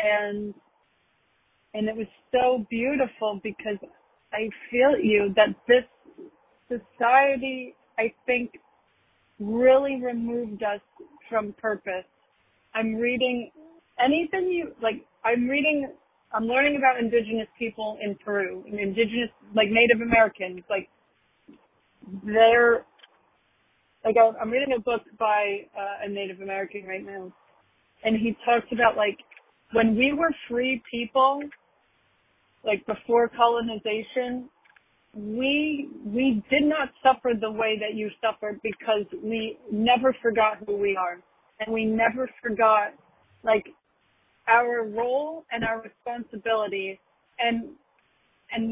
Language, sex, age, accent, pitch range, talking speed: English, female, 30-49, American, 215-255 Hz, 115 wpm